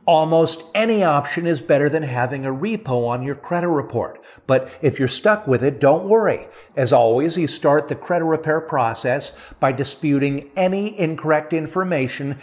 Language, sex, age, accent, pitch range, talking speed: English, male, 50-69, American, 130-170 Hz, 165 wpm